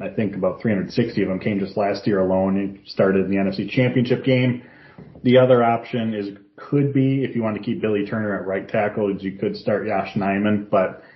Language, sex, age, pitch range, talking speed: English, male, 30-49, 105-120 Hz, 215 wpm